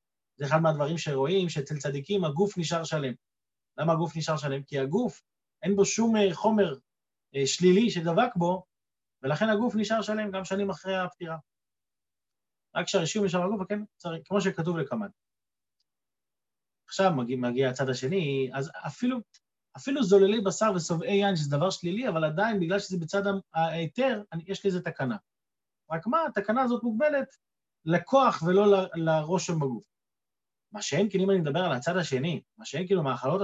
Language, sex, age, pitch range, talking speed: Hebrew, male, 30-49, 160-210 Hz, 145 wpm